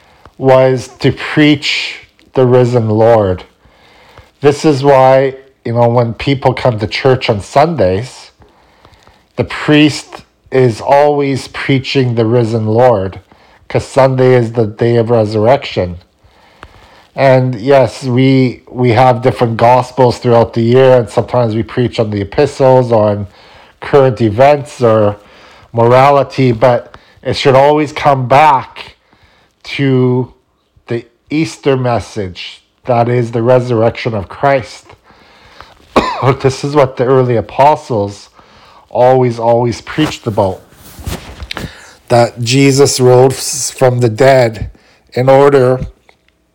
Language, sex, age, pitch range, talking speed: English, male, 50-69, 115-135 Hz, 115 wpm